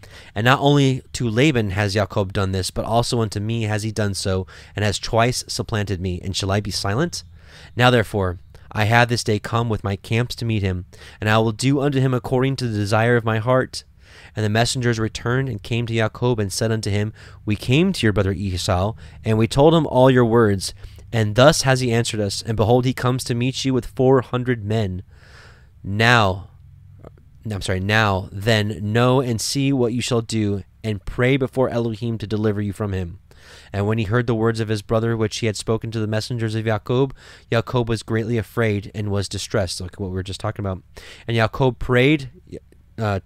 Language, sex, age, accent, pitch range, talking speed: English, male, 20-39, American, 100-120 Hz, 210 wpm